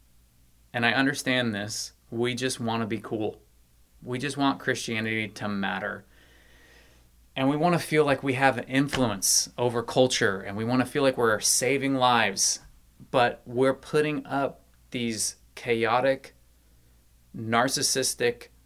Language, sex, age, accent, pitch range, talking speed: English, male, 30-49, American, 100-140 Hz, 140 wpm